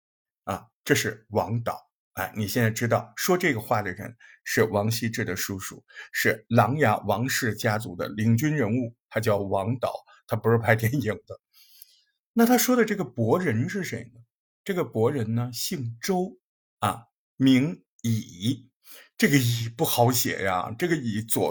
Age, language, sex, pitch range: 50-69, Chinese, male, 115-175 Hz